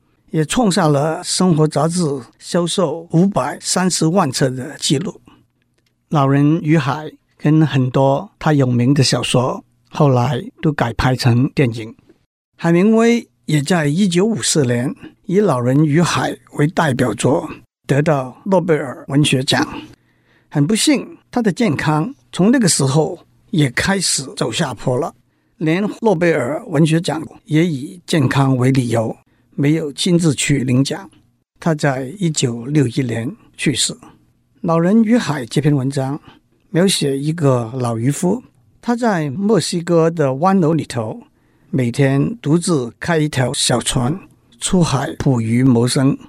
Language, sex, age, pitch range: Chinese, male, 50-69, 135-170 Hz